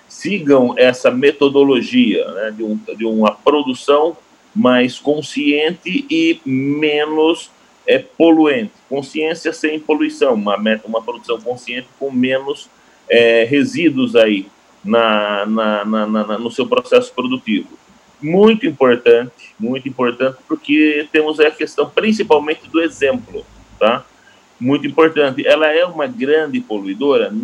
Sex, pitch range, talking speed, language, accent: male, 115-185 Hz, 105 wpm, Portuguese, Brazilian